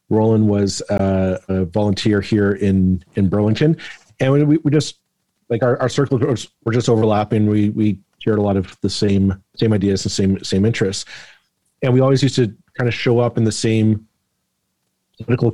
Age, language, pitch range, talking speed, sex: 40-59, English, 100-120 Hz, 180 wpm, male